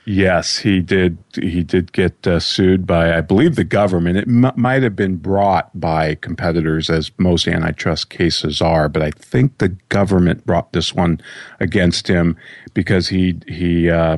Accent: American